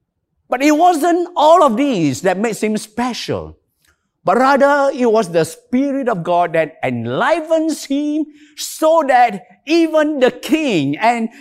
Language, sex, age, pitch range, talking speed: English, male, 50-69, 185-305 Hz, 140 wpm